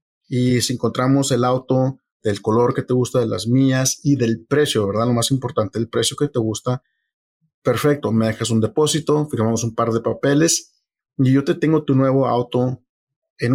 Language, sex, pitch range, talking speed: English, male, 115-140 Hz, 190 wpm